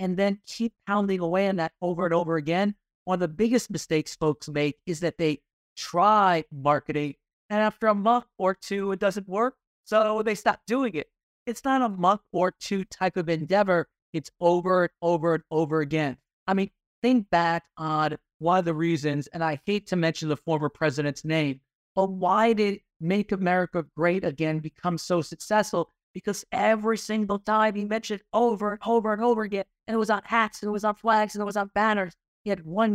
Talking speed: 200 wpm